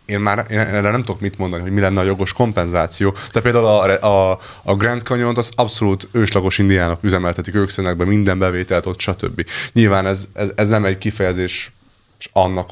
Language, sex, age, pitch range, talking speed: Hungarian, male, 30-49, 95-110 Hz, 185 wpm